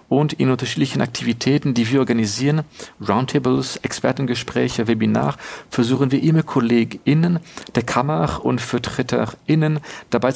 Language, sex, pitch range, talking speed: German, male, 115-140 Hz, 110 wpm